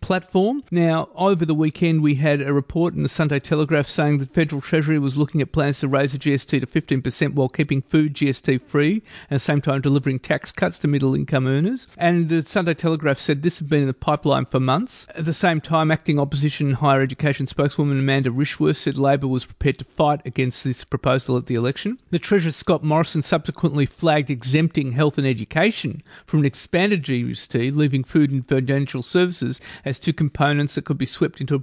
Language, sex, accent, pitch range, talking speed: English, male, Australian, 135-160 Hz, 205 wpm